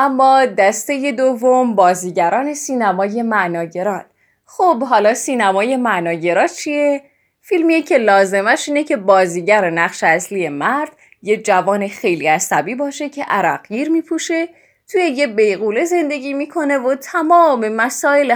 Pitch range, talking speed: 195-285 Hz, 125 wpm